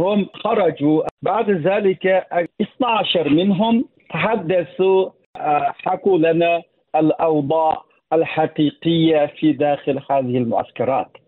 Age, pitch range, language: 50-69, 160-220 Hz, Arabic